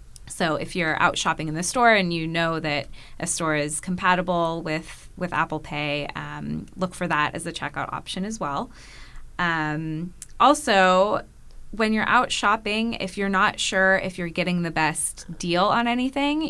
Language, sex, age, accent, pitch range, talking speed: English, female, 20-39, American, 155-190 Hz, 175 wpm